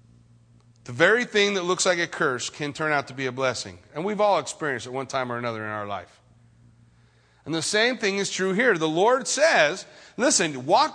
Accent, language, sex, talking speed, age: American, English, male, 215 wpm, 40-59